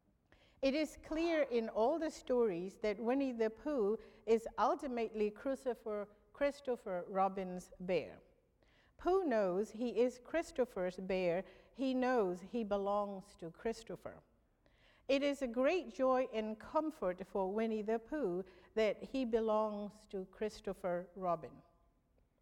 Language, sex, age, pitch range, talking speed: English, female, 50-69, 195-245 Hz, 125 wpm